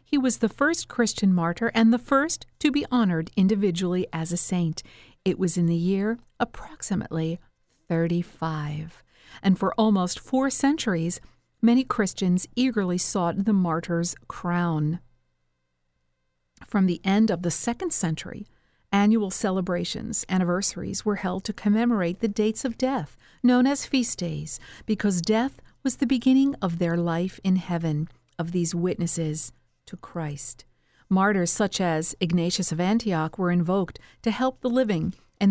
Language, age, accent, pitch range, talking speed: English, 50-69, American, 170-215 Hz, 145 wpm